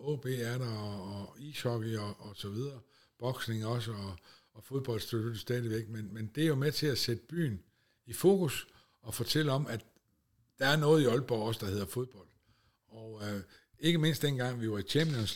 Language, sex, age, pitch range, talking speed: Danish, male, 60-79, 105-140 Hz, 195 wpm